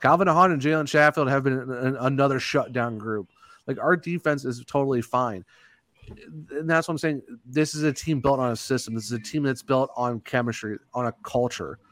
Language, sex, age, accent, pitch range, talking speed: English, male, 30-49, American, 120-145 Hz, 200 wpm